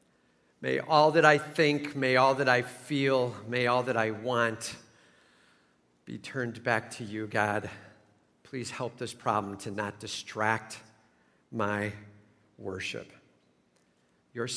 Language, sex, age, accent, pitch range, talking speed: English, male, 50-69, American, 115-165 Hz, 130 wpm